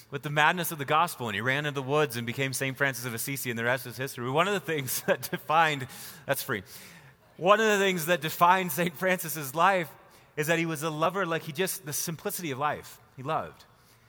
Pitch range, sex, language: 135-170 Hz, male, English